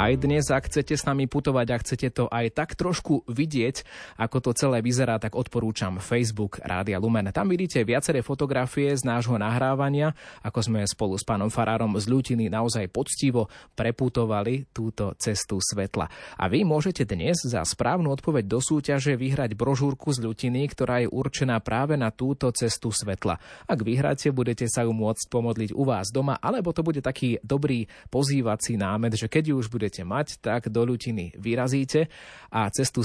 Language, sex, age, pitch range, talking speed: Slovak, male, 20-39, 110-135 Hz, 165 wpm